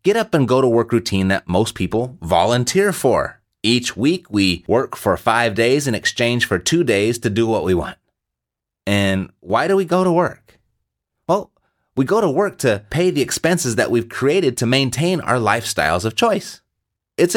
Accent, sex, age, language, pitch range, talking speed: American, male, 30-49, English, 95-140 Hz, 190 wpm